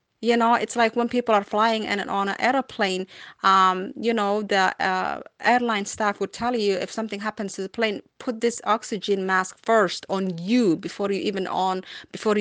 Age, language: 30-49, English